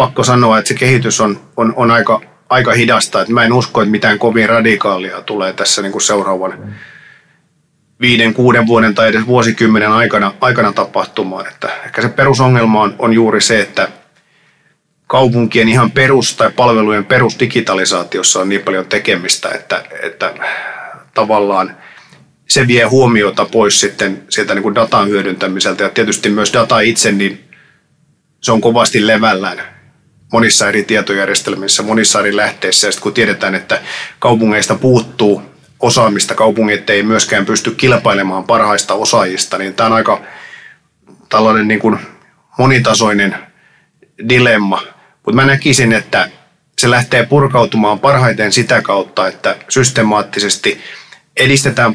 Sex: male